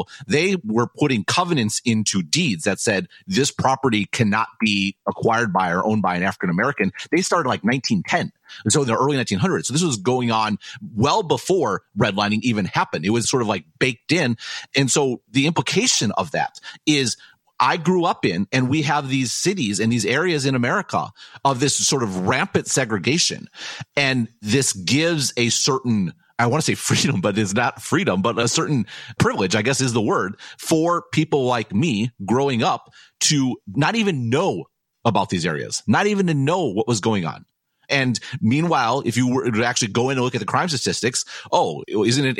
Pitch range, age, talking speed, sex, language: 115-145 Hz, 40-59, 190 wpm, male, English